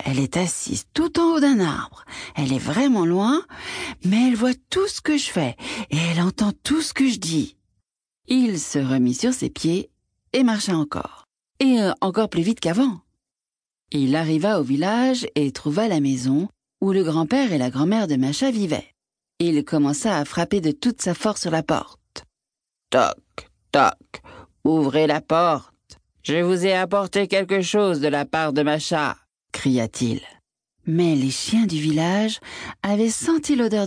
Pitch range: 155-250 Hz